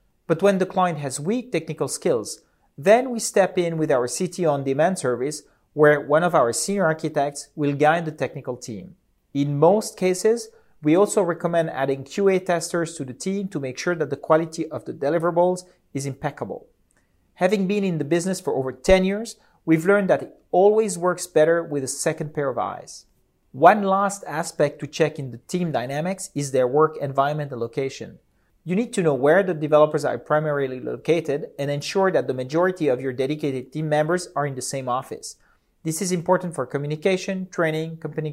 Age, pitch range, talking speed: 40-59, 140-185 Hz, 190 wpm